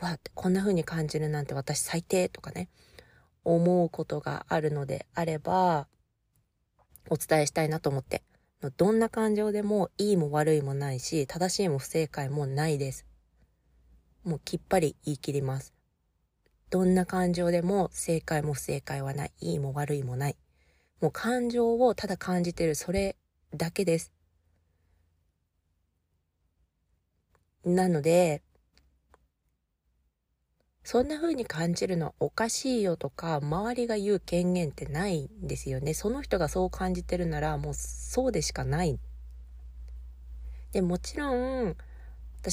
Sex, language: female, Japanese